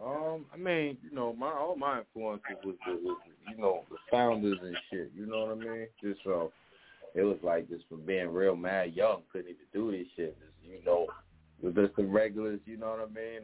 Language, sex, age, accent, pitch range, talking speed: English, male, 30-49, American, 85-105 Hz, 220 wpm